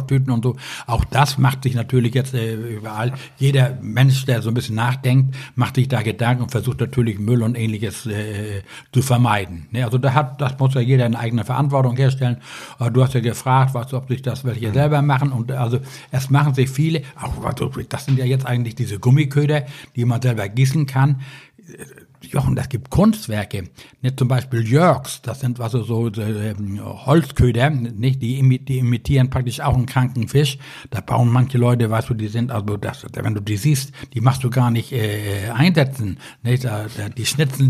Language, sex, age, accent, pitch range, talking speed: German, male, 60-79, German, 115-135 Hz, 195 wpm